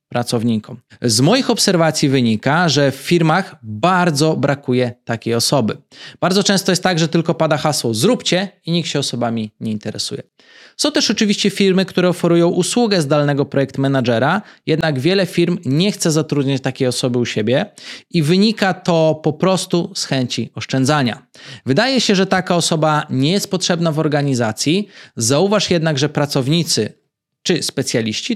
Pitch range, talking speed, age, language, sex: 135-175 Hz, 150 wpm, 20-39, Polish, male